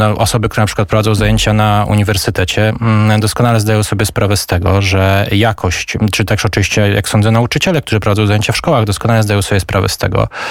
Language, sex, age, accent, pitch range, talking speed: Polish, male, 20-39, native, 95-120 Hz, 190 wpm